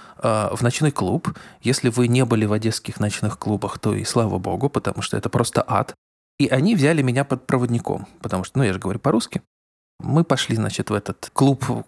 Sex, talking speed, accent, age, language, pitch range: male, 195 wpm, native, 20-39, Russian, 110-140 Hz